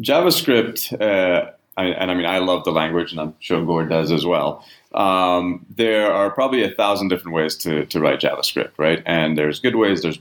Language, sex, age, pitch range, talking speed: English, male, 30-49, 80-100 Hz, 205 wpm